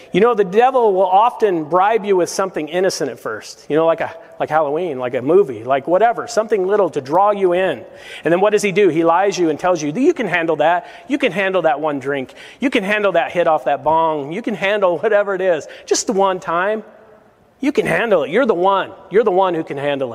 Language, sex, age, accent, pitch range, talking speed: English, male, 40-59, American, 160-210 Hz, 245 wpm